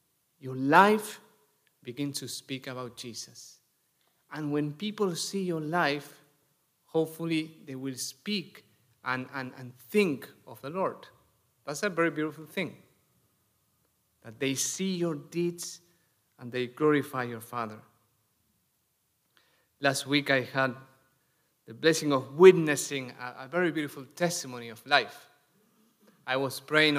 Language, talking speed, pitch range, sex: English, 125 wpm, 125-155 Hz, male